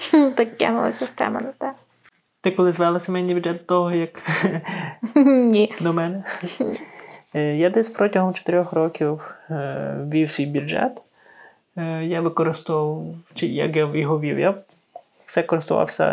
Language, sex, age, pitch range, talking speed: Ukrainian, male, 20-39, 150-180 Hz, 125 wpm